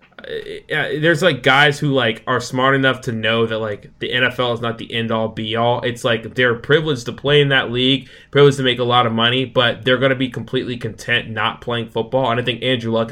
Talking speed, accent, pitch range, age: 245 wpm, American, 110-130 Hz, 20-39